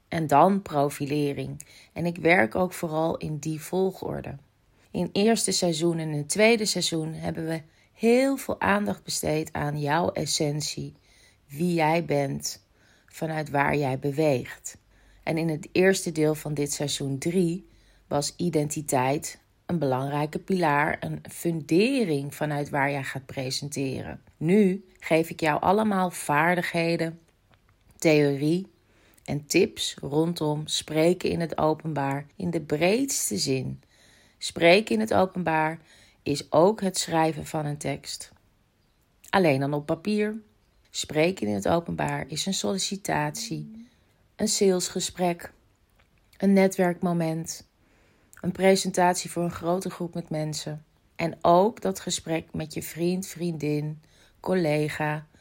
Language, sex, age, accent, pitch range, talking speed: Dutch, female, 30-49, Dutch, 145-180 Hz, 125 wpm